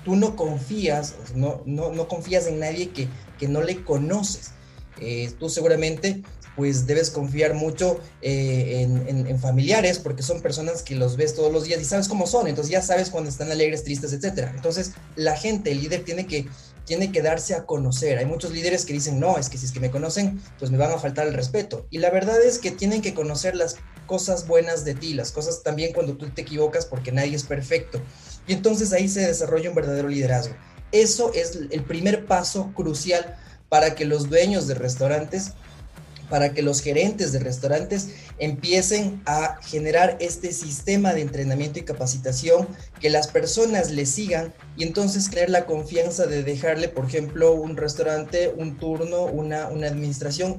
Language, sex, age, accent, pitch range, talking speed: Spanish, male, 30-49, Mexican, 145-180 Hz, 190 wpm